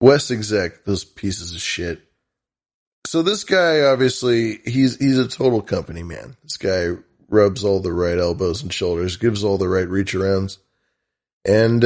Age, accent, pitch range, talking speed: 20-39, American, 95-125 Hz, 155 wpm